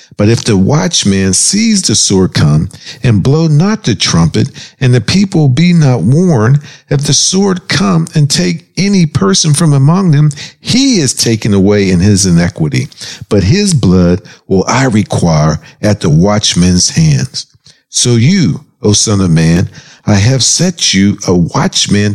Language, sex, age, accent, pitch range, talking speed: English, male, 50-69, American, 105-160 Hz, 160 wpm